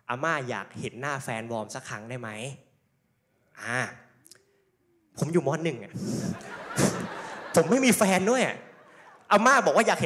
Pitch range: 160-215 Hz